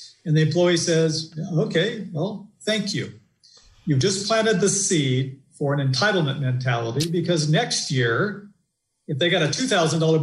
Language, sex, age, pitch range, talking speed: English, male, 50-69, 140-180 Hz, 145 wpm